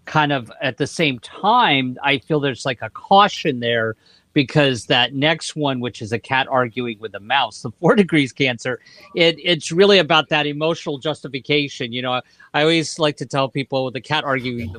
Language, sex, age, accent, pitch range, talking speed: English, male, 50-69, American, 125-150 Hz, 185 wpm